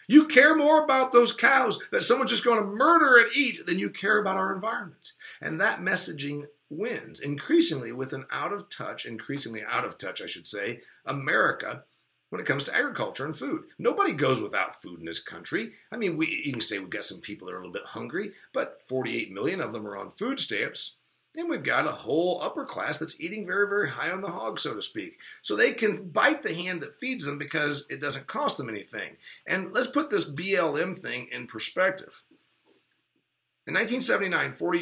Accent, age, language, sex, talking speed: American, 50-69, English, male, 200 wpm